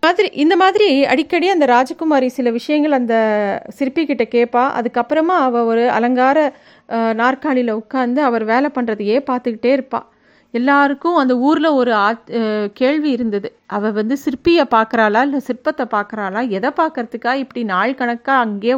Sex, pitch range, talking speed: female, 225-280 Hz, 130 wpm